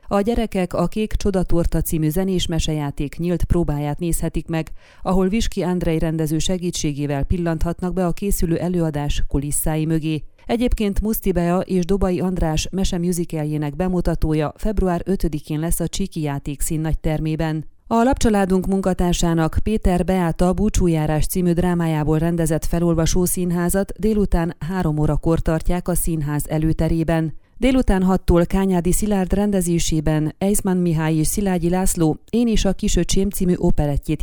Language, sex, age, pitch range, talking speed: Hungarian, female, 30-49, 155-190 Hz, 125 wpm